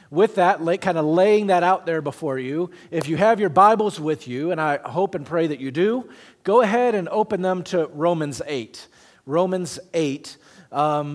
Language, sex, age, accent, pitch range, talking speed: English, male, 40-59, American, 145-180 Hz, 200 wpm